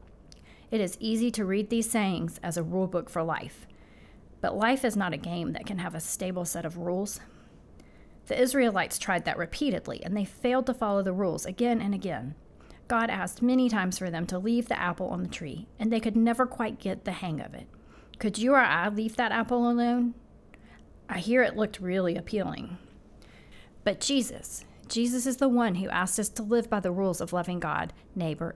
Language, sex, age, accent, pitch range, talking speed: English, female, 40-59, American, 180-230 Hz, 205 wpm